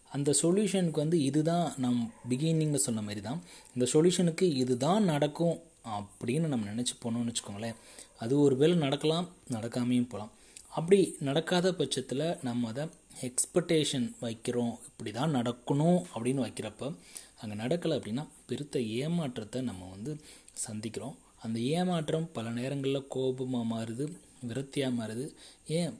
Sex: male